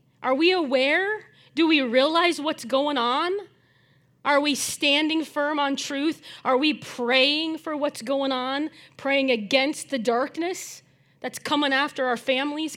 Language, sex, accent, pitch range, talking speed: English, female, American, 230-300 Hz, 145 wpm